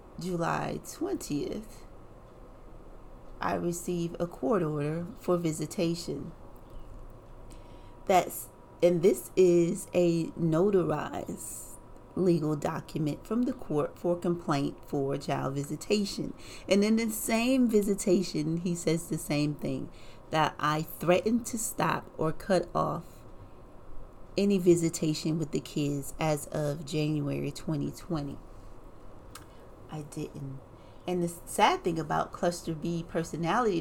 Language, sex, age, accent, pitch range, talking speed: English, female, 30-49, American, 145-180 Hz, 110 wpm